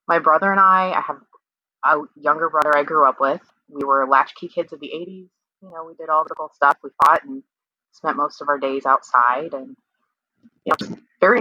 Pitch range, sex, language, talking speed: 135-195 Hz, female, English, 215 wpm